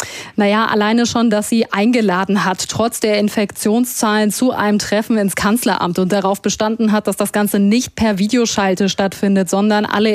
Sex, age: female, 20-39